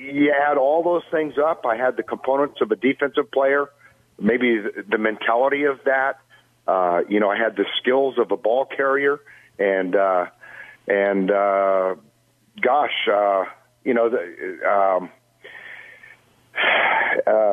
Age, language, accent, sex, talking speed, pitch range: 50-69, English, American, male, 135 wpm, 120-160 Hz